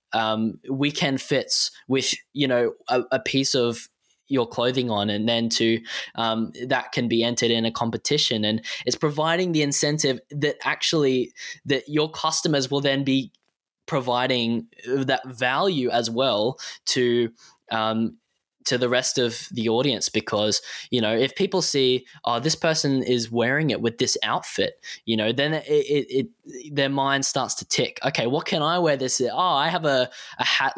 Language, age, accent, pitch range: English, 10-29, Australian, 120-145 Hz